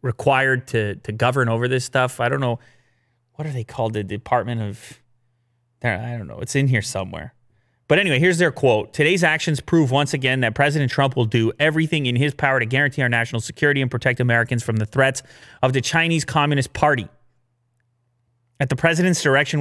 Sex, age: male, 30-49